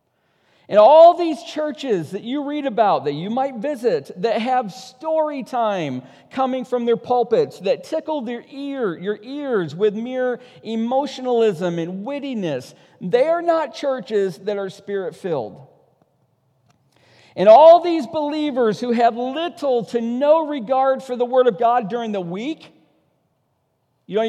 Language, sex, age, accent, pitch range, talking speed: English, male, 50-69, American, 205-285 Hz, 140 wpm